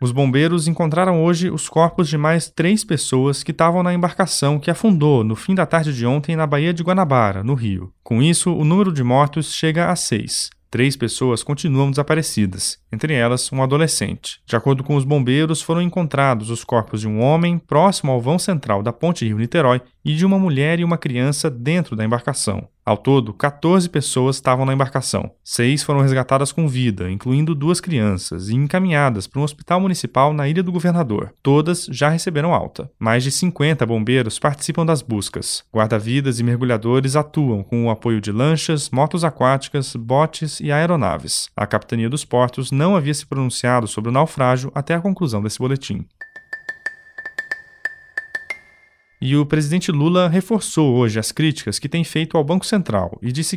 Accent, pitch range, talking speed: Brazilian, 125-170 Hz, 175 wpm